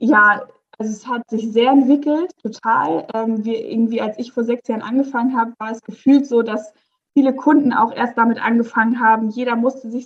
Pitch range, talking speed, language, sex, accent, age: 220-255 Hz, 195 wpm, German, female, German, 20-39